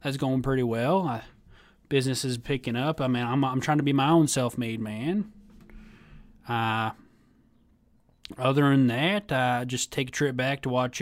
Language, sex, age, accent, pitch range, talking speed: English, male, 20-39, American, 120-155 Hz, 180 wpm